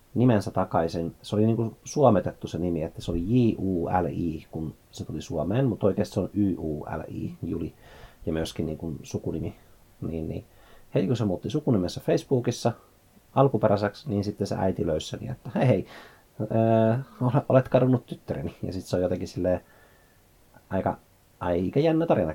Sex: male